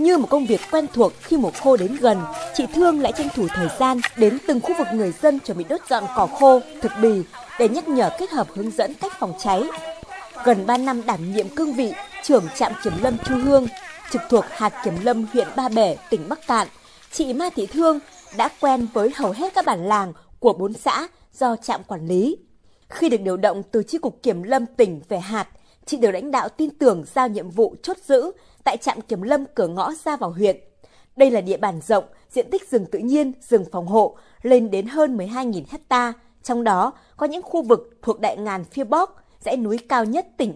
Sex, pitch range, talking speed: female, 215-290 Hz, 225 wpm